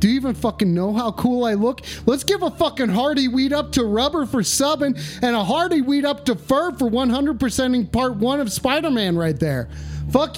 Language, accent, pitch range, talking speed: English, American, 155-240 Hz, 215 wpm